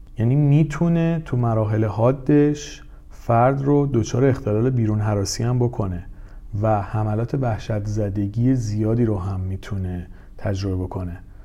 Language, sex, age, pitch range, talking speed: Persian, male, 40-59, 100-135 Hz, 120 wpm